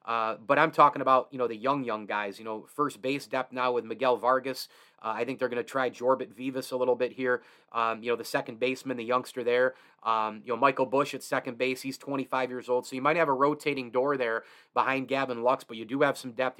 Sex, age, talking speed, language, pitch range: male, 30-49, 255 wpm, English, 125-150 Hz